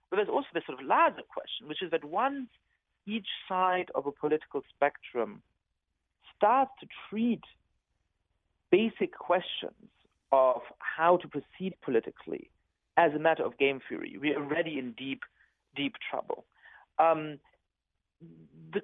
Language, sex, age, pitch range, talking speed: English, male, 50-69, 145-205 Hz, 135 wpm